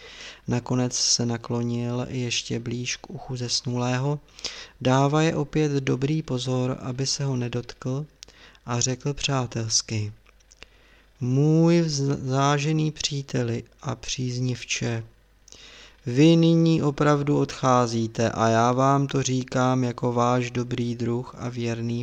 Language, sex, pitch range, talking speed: Czech, male, 120-145 Hz, 110 wpm